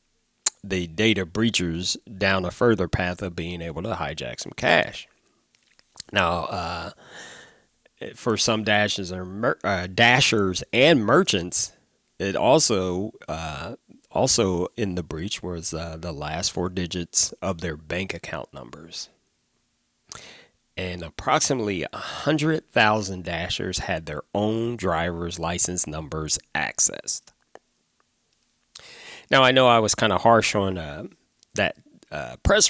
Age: 30-49